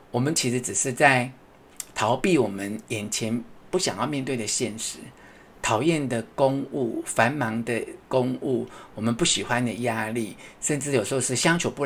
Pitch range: 115-165 Hz